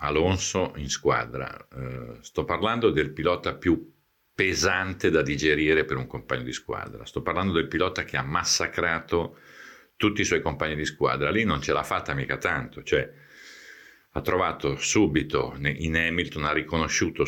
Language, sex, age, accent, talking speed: Italian, male, 50-69, native, 155 wpm